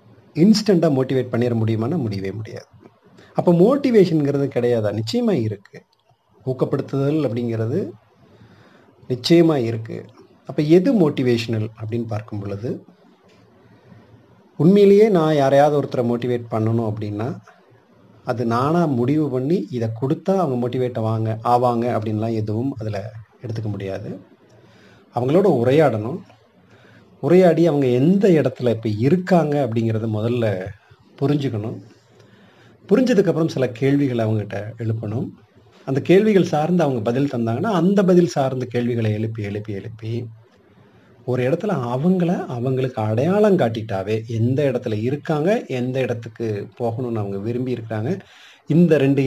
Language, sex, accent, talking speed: Tamil, male, native, 105 wpm